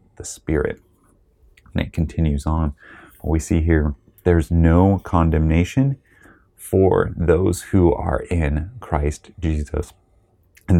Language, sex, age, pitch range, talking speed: English, male, 30-49, 80-95 Hz, 110 wpm